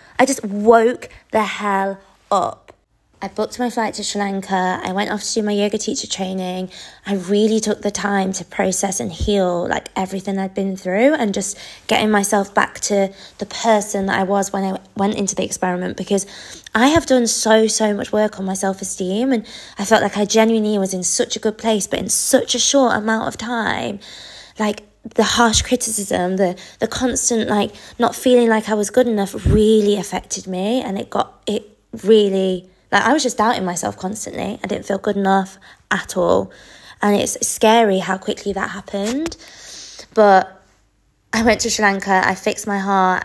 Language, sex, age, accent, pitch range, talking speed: English, female, 20-39, British, 190-225 Hz, 190 wpm